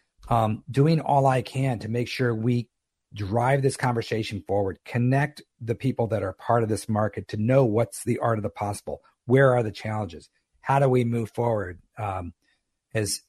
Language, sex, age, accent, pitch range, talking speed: English, male, 50-69, American, 110-135 Hz, 190 wpm